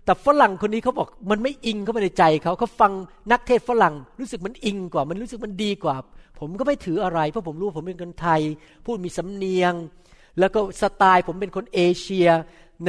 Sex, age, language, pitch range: male, 60-79, Thai, 180-235 Hz